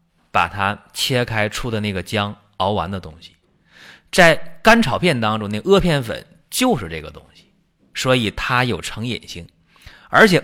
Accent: native